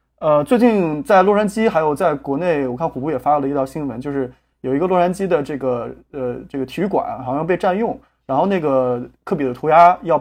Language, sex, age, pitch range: Chinese, male, 20-39, 135-185 Hz